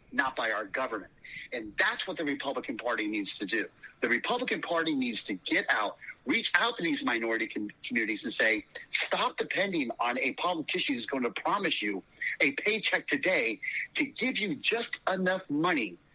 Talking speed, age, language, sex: 175 wpm, 40-59, English, male